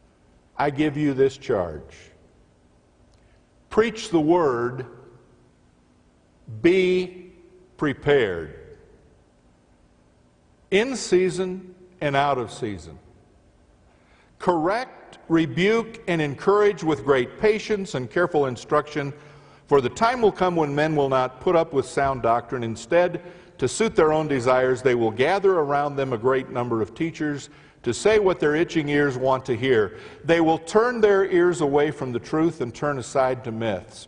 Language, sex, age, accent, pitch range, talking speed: English, male, 50-69, American, 115-175 Hz, 140 wpm